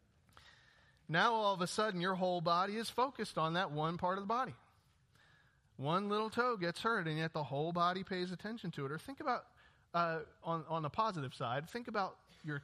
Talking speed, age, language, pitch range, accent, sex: 205 wpm, 40-59, English, 140-190 Hz, American, male